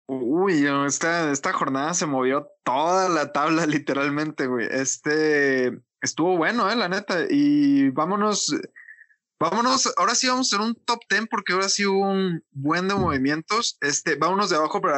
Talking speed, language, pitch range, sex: 165 wpm, Spanish, 145-190 Hz, male